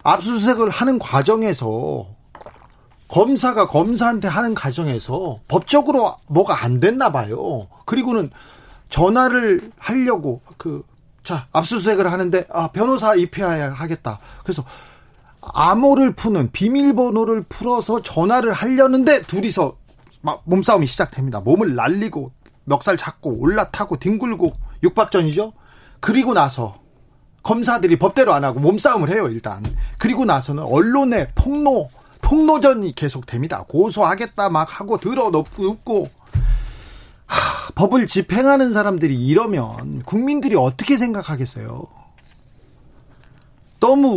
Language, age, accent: Korean, 40-59, native